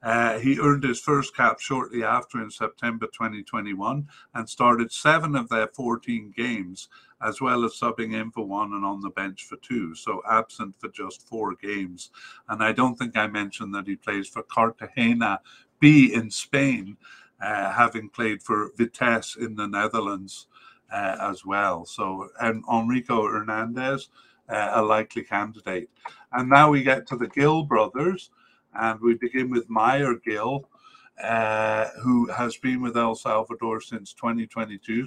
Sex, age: male, 50-69